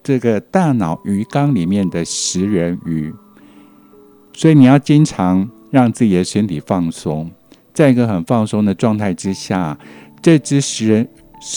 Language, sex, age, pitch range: Chinese, male, 60-79, 95-145 Hz